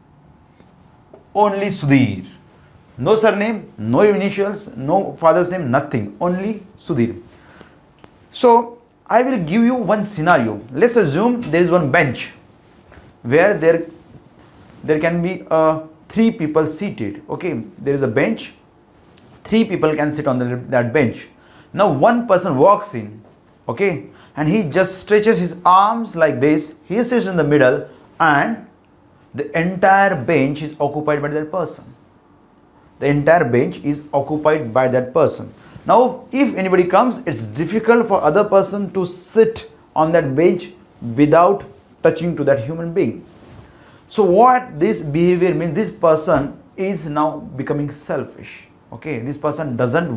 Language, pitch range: Hindi, 145-200 Hz